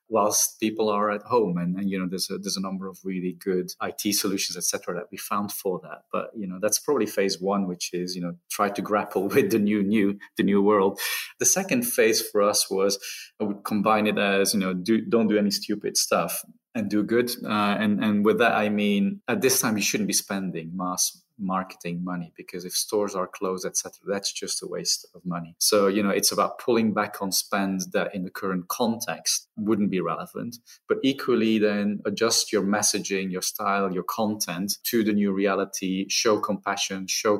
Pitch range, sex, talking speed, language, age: 95-105 Hz, male, 215 wpm, English, 30-49